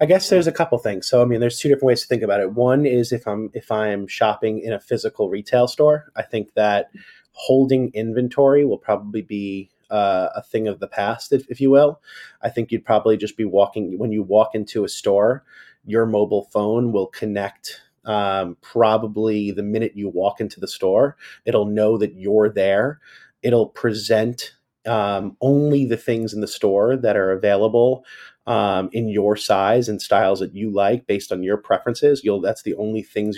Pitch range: 105-120 Hz